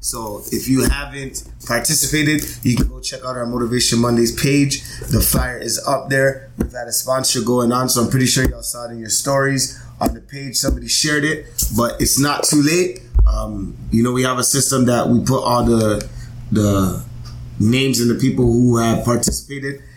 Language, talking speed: English, 200 wpm